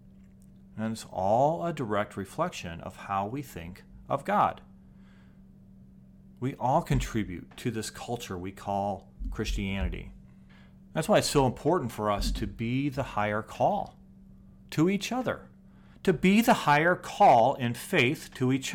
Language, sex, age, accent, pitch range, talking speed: English, male, 40-59, American, 95-145 Hz, 145 wpm